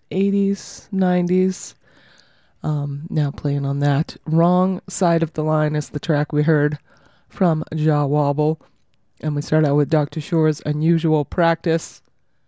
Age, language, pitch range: 30-49, English, 145-170 Hz